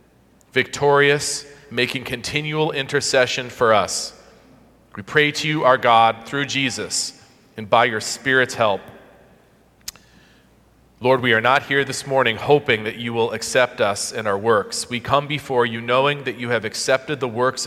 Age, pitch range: 40-59, 115-135 Hz